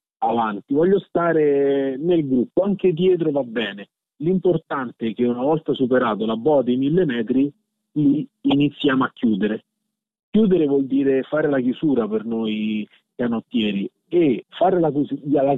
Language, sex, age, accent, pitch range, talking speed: Italian, male, 40-59, native, 120-155 Hz, 135 wpm